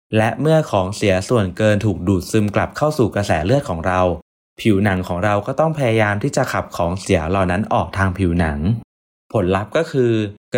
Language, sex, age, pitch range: Thai, male, 20-39, 90-120 Hz